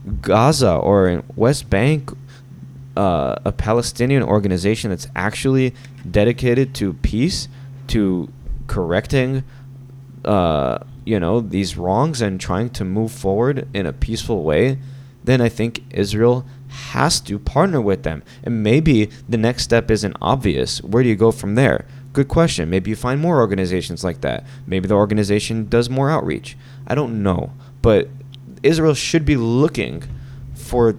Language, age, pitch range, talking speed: English, 20-39, 105-135 Hz, 145 wpm